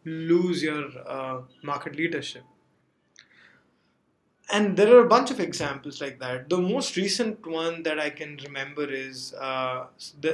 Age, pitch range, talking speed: 20-39, 135-165 Hz, 145 wpm